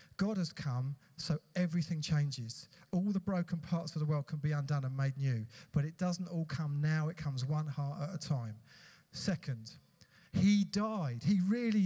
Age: 40-59